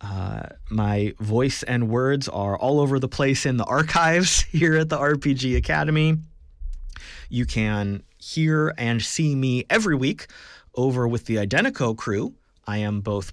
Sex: male